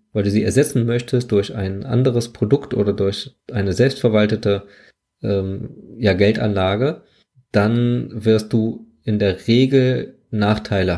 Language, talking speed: German, 120 wpm